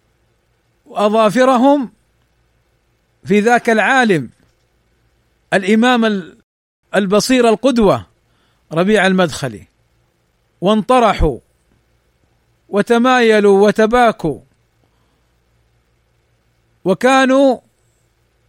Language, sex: Arabic, male